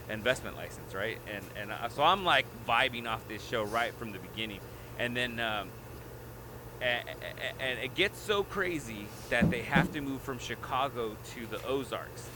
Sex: male